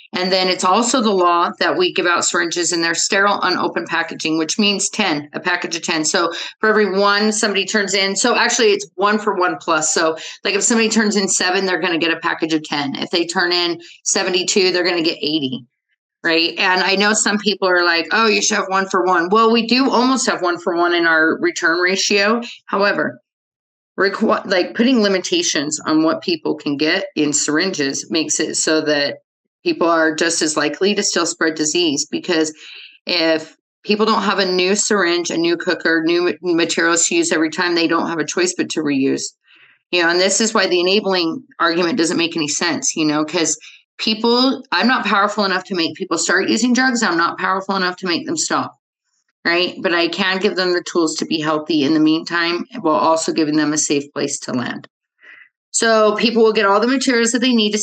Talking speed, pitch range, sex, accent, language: 215 wpm, 170-215 Hz, female, American, English